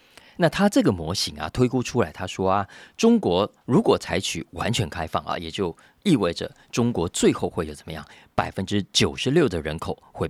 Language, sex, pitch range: Chinese, male, 80-120 Hz